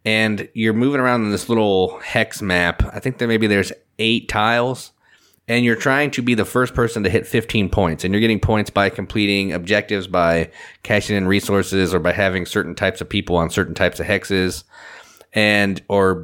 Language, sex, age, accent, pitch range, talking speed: English, male, 30-49, American, 95-115 Hz, 200 wpm